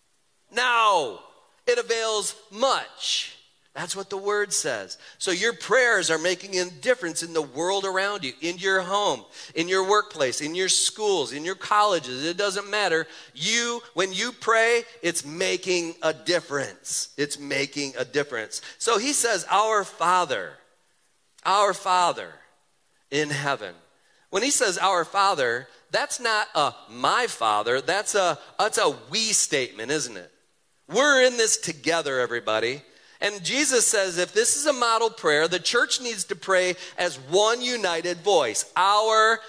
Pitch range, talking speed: 180-235 Hz, 150 wpm